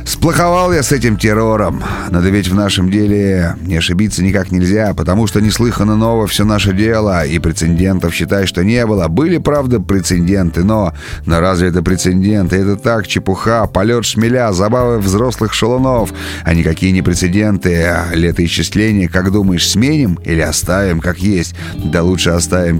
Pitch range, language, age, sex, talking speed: 85-105 Hz, Russian, 30-49, male, 155 wpm